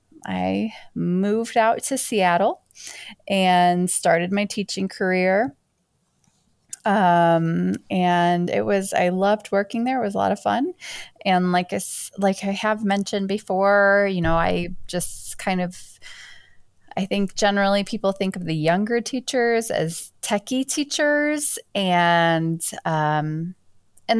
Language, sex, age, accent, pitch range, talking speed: English, female, 20-39, American, 170-200 Hz, 130 wpm